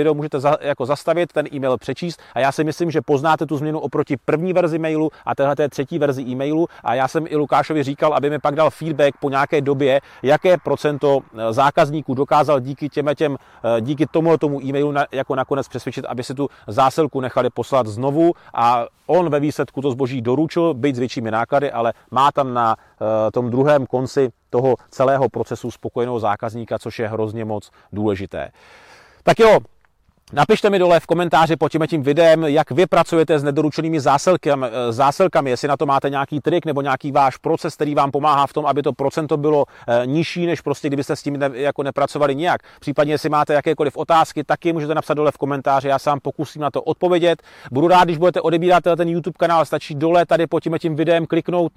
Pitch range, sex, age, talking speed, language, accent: 135-160 Hz, male, 30-49, 195 wpm, Czech, native